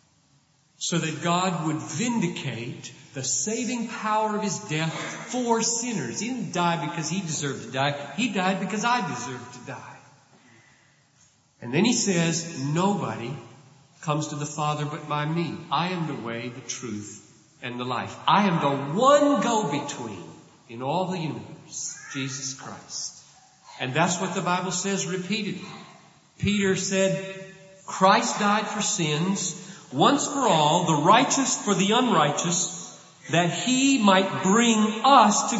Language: English